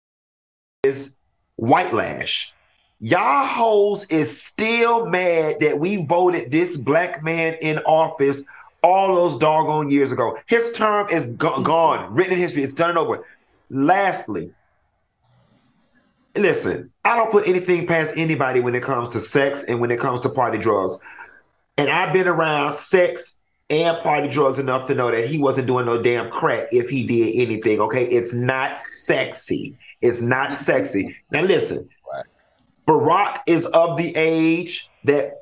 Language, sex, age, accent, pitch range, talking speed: English, male, 40-59, American, 140-175 Hz, 150 wpm